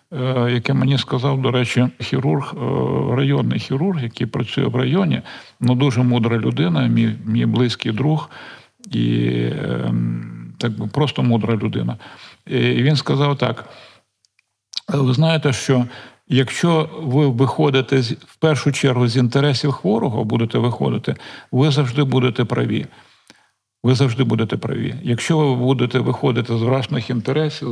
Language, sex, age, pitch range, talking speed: Ukrainian, male, 50-69, 115-140 Hz, 130 wpm